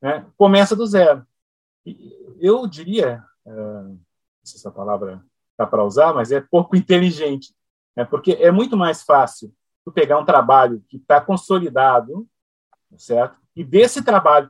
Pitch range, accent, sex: 145-205 Hz, Brazilian, male